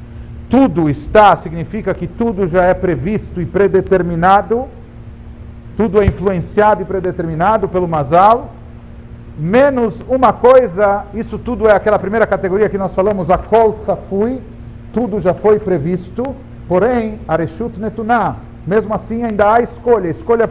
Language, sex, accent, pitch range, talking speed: Portuguese, male, Brazilian, 150-215 Hz, 135 wpm